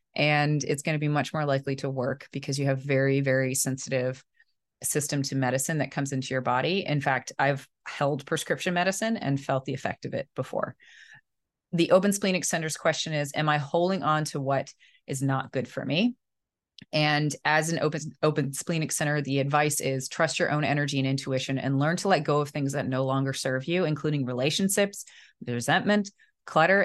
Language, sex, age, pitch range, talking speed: English, female, 30-49, 135-165 Hz, 190 wpm